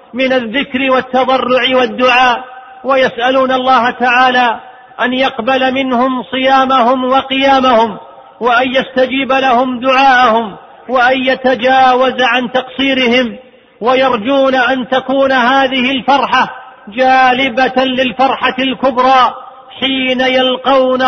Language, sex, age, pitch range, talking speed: Arabic, male, 40-59, 250-265 Hz, 85 wpm